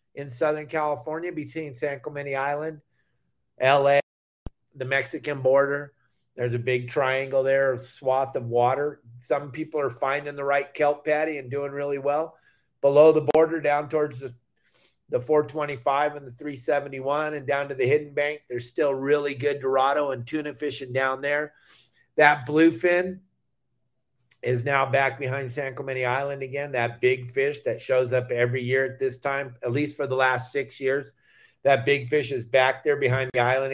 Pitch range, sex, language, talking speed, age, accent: 130-150 Hz, male, English, 170 wpm, 50-69, American